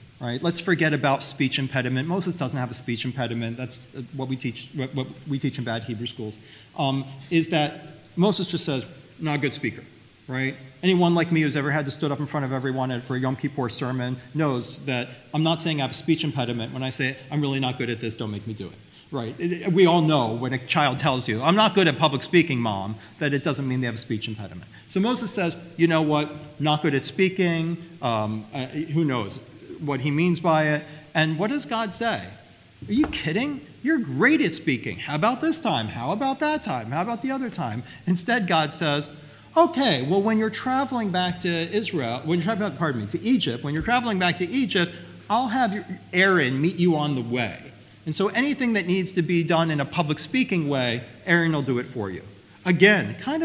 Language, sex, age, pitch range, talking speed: English, male, 40-59, 130-180 Hz, 220 wpm